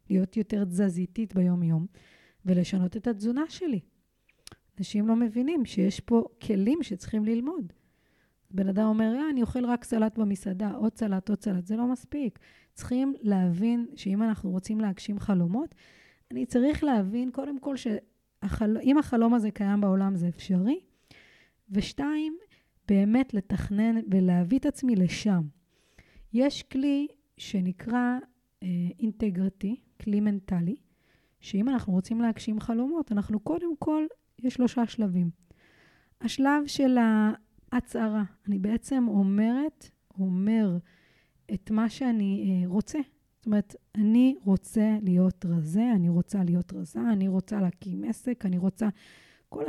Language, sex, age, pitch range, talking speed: Hebrew, female, 20-39, 195-245 Hz, 125 wpm